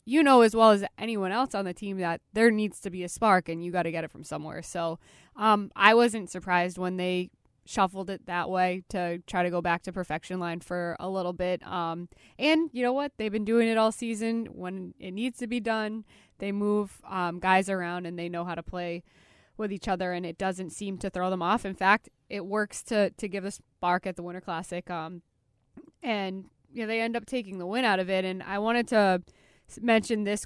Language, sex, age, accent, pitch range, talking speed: English, female, 20-39, American, 180-215 Hz, 230 wpm